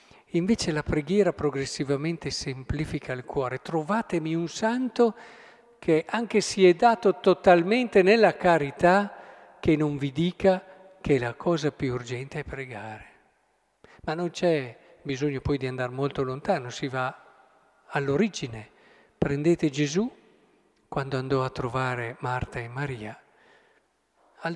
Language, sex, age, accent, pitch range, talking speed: Italian, male, 50-69, native, 130-185 Hz, 125 wpm